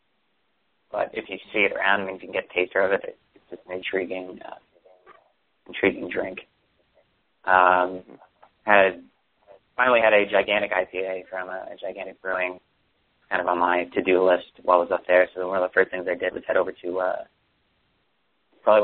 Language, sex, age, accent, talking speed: English, male, 30-49, American, 190 wpm